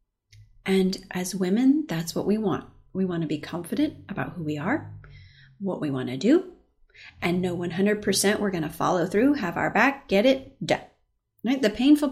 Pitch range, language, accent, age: 160-210 Hz, English, American, 30-49